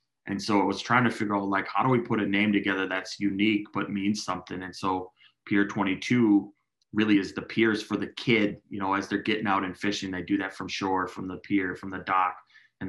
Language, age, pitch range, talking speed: English, 20-39, 95-105 Hz, 240 wpm